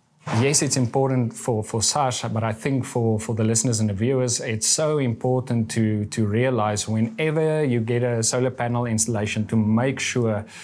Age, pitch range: 30-49, 115-130 Hz